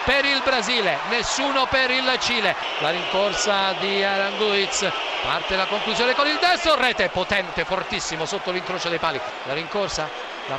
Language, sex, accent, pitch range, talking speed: Italian, male, native, 185-255 Hz, 155 wpm